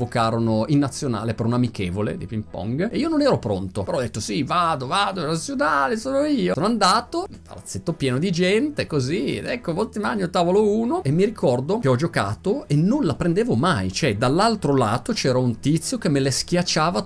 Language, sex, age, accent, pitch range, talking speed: Italian, male, 30-49, native, 100-165 Hz, 200 wpm